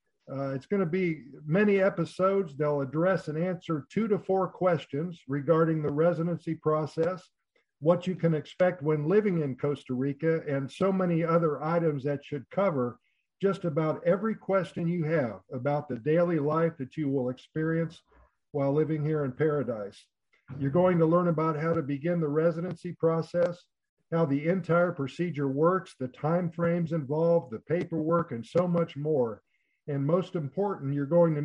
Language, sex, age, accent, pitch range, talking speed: English, male, 50-69, American, 140-170 Hz, 165 wpm